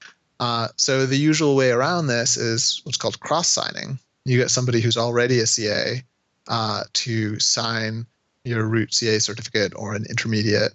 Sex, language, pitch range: male, English, 110-125 Hz